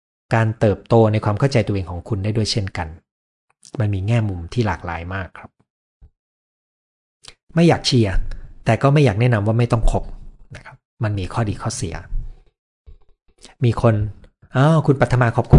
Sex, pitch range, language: male, 105-135 Hz, Thai